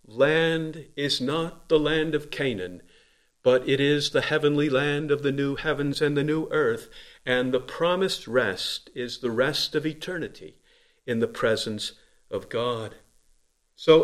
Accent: American